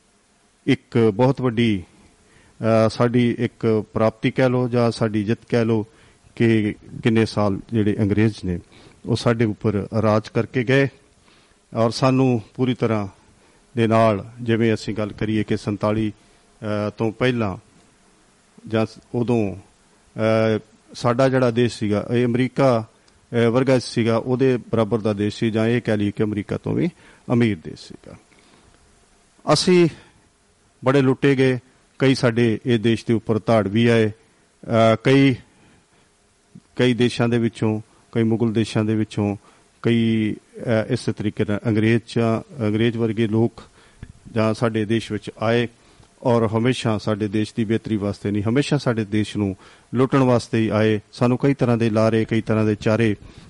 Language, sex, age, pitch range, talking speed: Punjabi, male, 50-69, 110-125 Hz, 140 wpm